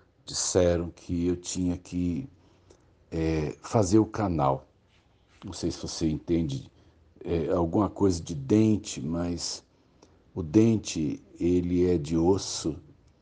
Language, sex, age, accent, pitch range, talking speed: Portuguese, male, 60-79, Brazilian, 85-100 Hz, 105 wpm